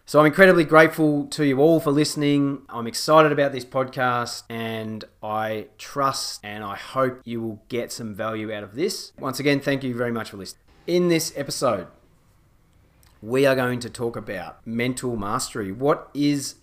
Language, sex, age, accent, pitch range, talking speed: English, male, 30-49, Australian, 115-145 Hz, 175 wpm